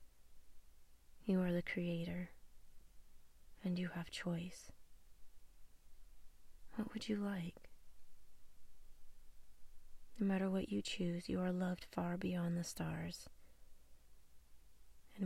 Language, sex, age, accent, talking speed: English, female, 30-49, American, 100 wpm